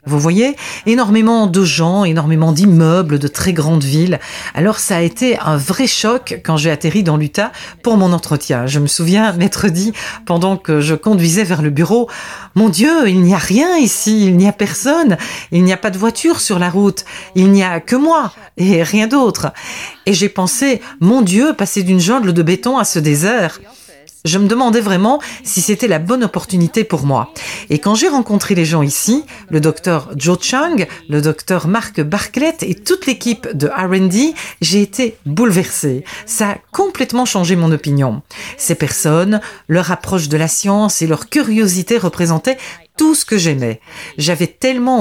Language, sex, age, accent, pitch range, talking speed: French, female, 40-59, French, 160-225 Hz, 185 wpm